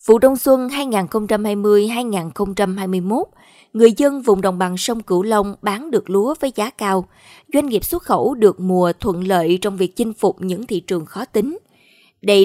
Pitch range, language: 190-240 Hz, Vietnamese